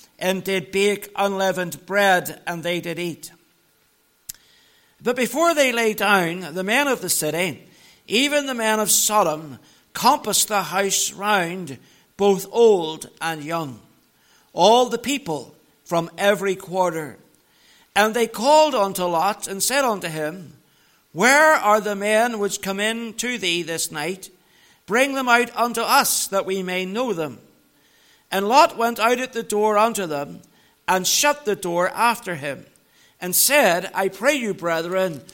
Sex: male